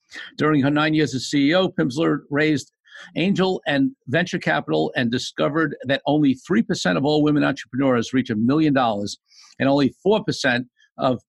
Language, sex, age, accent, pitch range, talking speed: English, male, 50-69, American, 120-150 Hz, 165 wpm